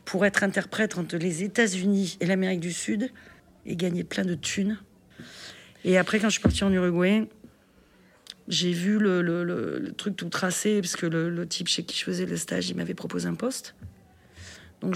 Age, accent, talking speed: 40-59, French, 200 wpm